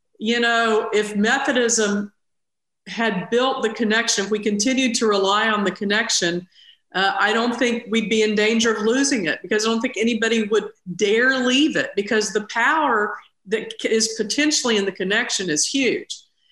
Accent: American